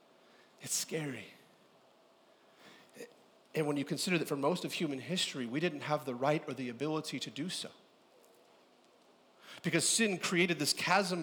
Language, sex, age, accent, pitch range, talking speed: English, male, 40-59, American, 175-235 Hz, 150 wpm